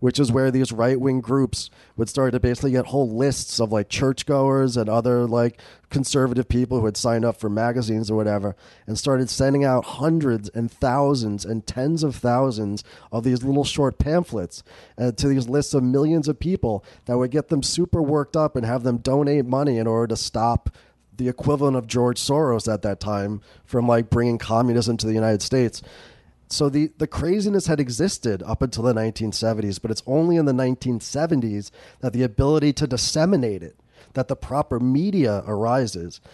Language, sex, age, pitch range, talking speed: English, male, 30-49, 110-135 Hz, 185 wpm